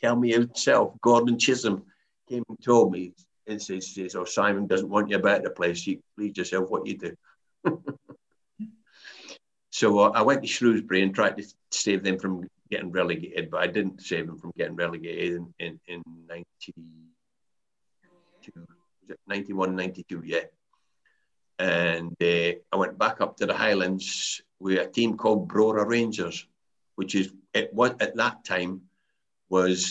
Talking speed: 150 wpm